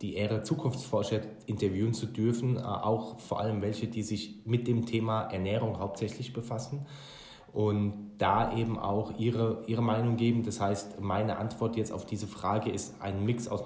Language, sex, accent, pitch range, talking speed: German, male, German, 105-120 Hz, 165 wpm